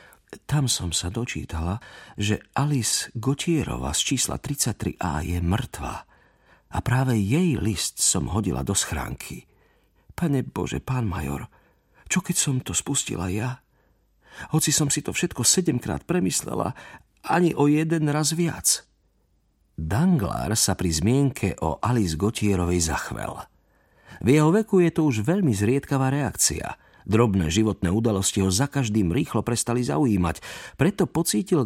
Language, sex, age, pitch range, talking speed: Slovak, male, 50-69, 90-140 Hz, 135 wpm